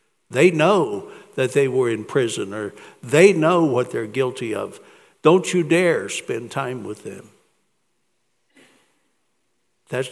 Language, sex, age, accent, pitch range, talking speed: English, male, 60-79, American, 125-200 Hz, 130 wpm